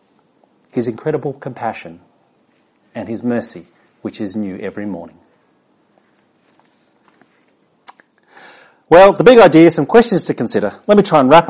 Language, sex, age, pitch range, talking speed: English, male, 40-59, 130-195 Hz, 125 wpm